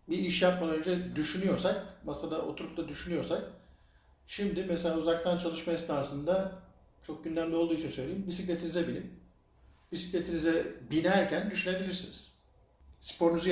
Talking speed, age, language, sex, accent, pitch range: 110 wpm, 50-69, Turkish, male, native, 150-210 Hz